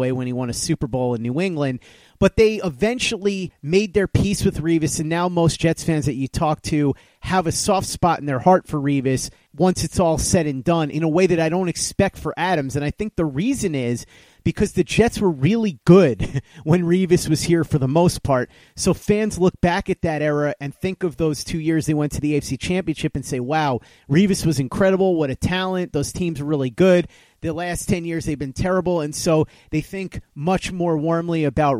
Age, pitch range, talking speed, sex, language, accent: 30-49, 145-180 Hz, 225 wpm, male, English, American